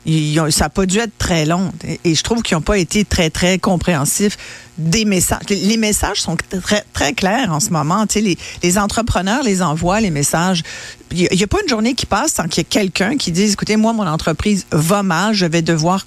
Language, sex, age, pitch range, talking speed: French, female, 50-69, 165-210 Hz, 230 wpm